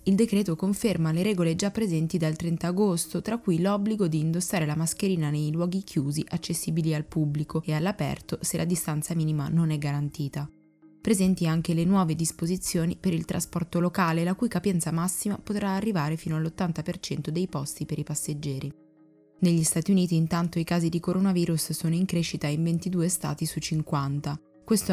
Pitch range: 155-180 Hz